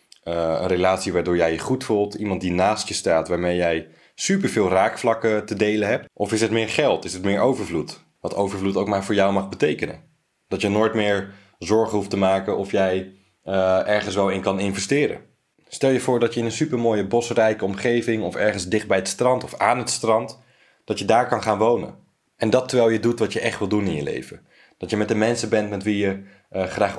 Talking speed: 230 wpm